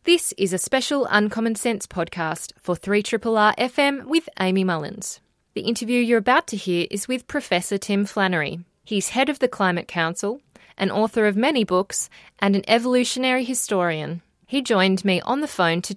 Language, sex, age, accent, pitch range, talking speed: English, female, 20-39, Australian, 165-210 Hz, 175 wpm